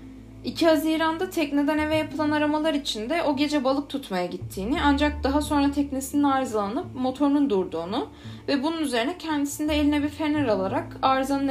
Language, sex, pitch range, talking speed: Turkish, female, 210-305 Hz, 145 wpm